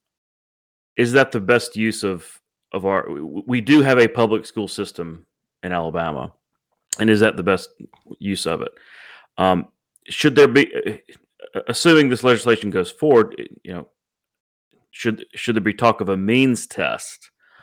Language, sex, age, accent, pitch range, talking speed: English, male, 30-49, American, 95-120 Hz, 155 wpm